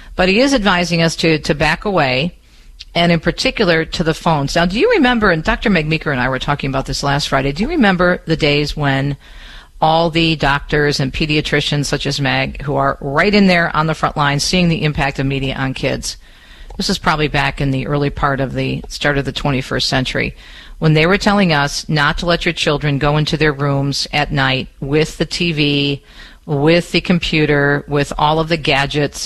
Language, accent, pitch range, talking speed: English, American, 140-175 Hz, 210 wpm